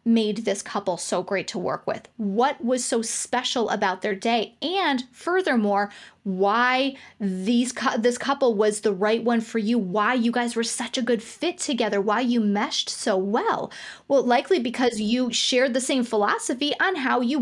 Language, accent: English, American